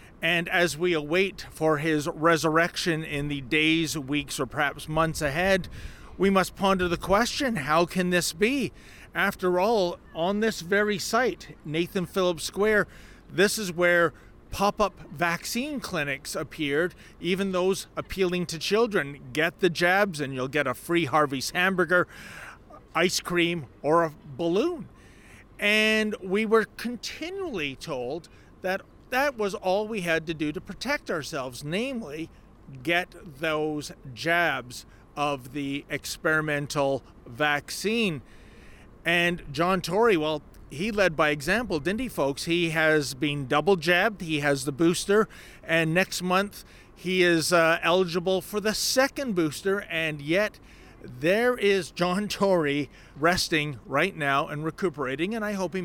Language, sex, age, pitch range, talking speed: English, male, 40-59, 150-190 Hz, 140 wpm